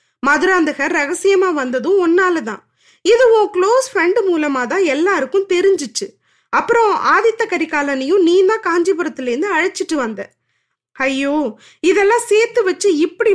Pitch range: 255-370 Hz